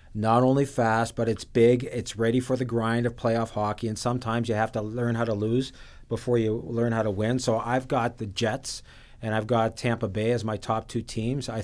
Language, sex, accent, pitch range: English, male, American, 115-130 Hz